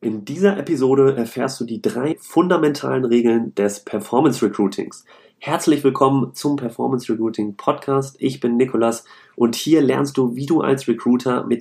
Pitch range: 115-140 Hz